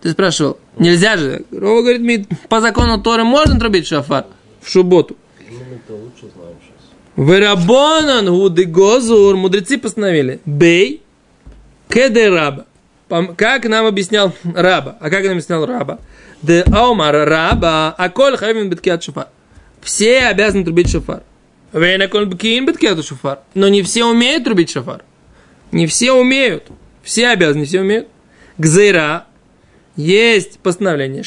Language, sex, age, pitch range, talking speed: Russian, male, 20-39, 155-215 Hz, 115 wpm